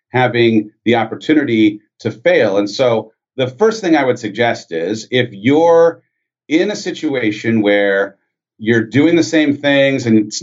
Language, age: English, 40-59